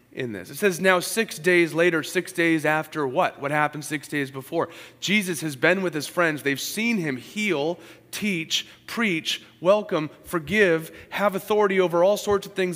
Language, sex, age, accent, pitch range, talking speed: English, male, 30-49, American, 125-180 Hz, 180 wpm